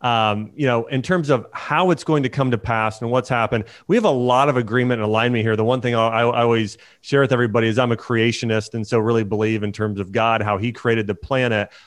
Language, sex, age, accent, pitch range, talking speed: English, male, 30-49, American, 115-145 Hz, 265 wpm